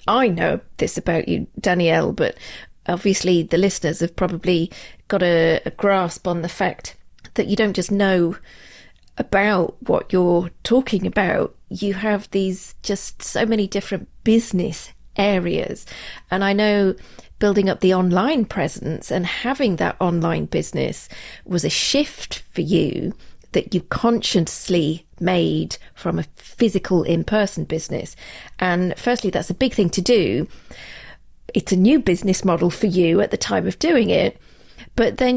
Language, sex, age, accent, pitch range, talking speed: English, female, 40-59, British, 180-225 Hz, 150 wpm